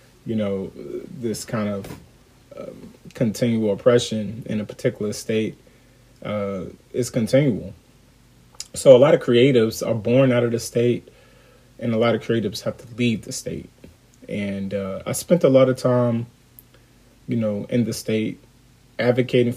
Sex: male